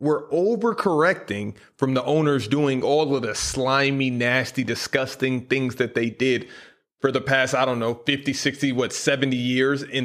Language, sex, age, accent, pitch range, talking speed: English, male, 30-49, American, 115-145 Hz, 165 wpm